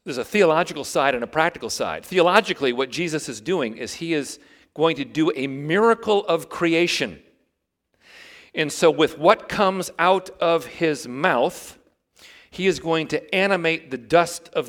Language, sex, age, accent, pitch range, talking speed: English, male, 40-59, American, 130-175 Hz, 165 wpm